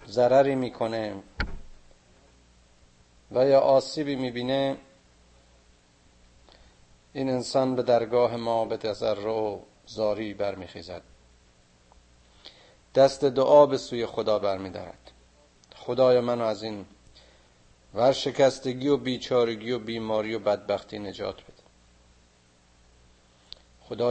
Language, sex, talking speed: Persian, male, 90 wpm